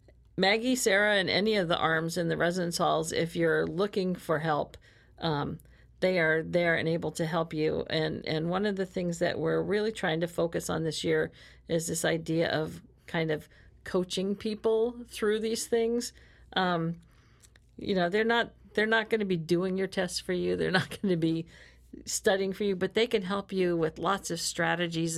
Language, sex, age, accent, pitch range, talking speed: English, female, 50-69, American, 160-190 Hz, 200 wpm